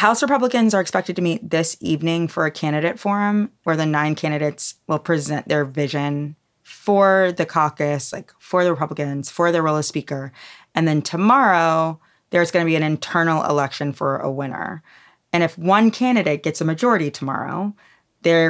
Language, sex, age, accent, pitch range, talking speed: English, female, 20-39, American, 150-190 Hz, 175 wpm